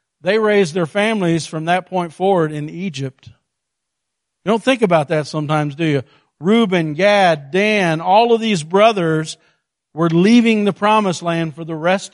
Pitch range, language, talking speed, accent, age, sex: 140-185 Hz, English, 165 wpm, American, 50-69, male